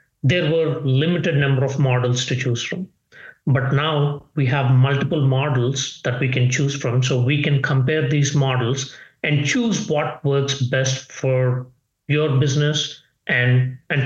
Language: English